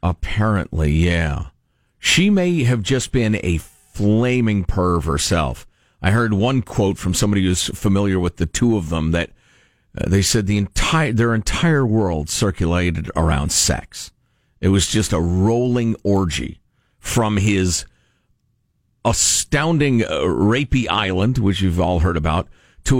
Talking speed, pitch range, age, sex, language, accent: 140 wpm, 95-135 Hz, 50-69, male, English, American